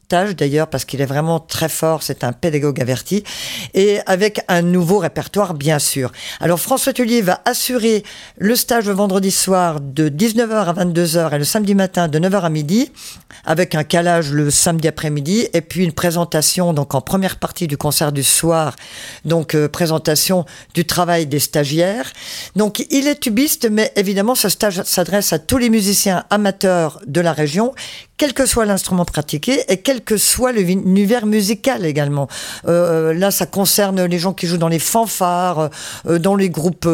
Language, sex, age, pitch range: French, female, 50-69, 155-205 Hz